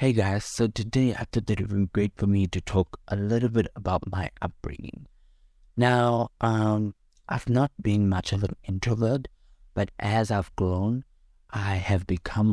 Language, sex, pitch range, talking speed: English, male, 85-100 Hz, 175 wpm